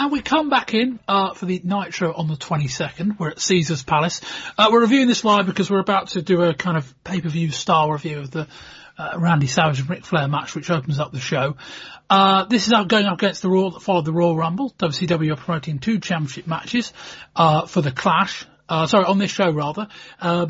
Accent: British